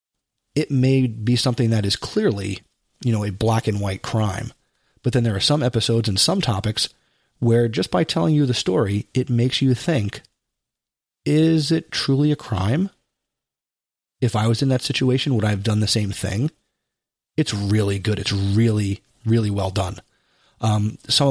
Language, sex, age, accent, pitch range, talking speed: English, male, 30-49, American, 105-125 Hz, 175 wpm